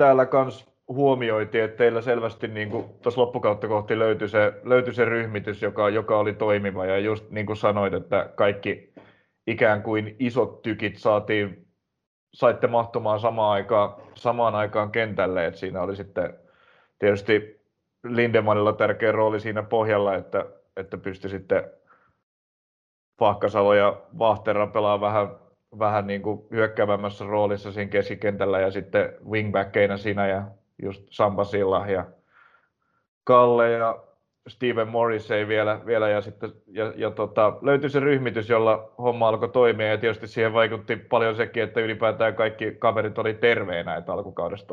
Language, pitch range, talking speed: Finnish, 100-115 Hz, 140 wpm